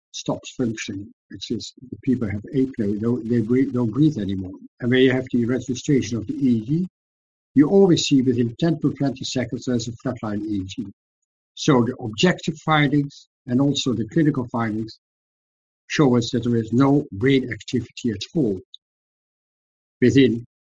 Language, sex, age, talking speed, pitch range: English, male, 60-79, 160 wpm, 110-130 Hz